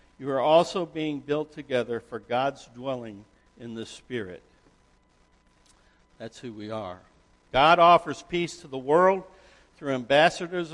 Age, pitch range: 60-79, 105-155 Hz